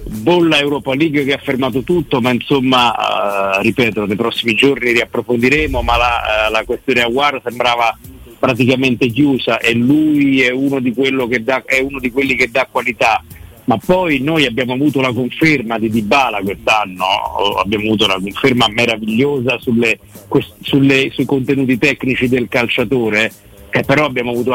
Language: Italian